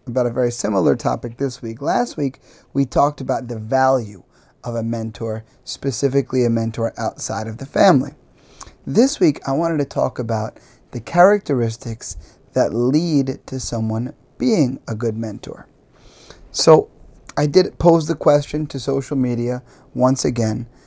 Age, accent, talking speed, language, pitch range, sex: 30-49, American, 150 wpm, English, 115-140 Hz, male